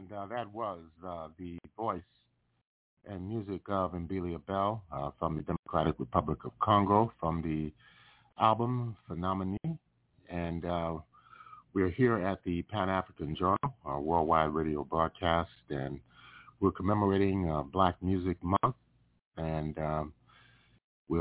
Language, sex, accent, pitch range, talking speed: English, male, American, 80-100 Hz, 125 wpm